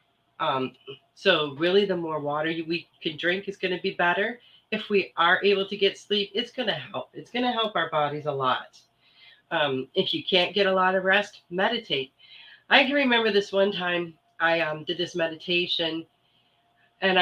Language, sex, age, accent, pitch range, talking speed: English, female, 40-59, American, 150-190 Hz, 190 wpm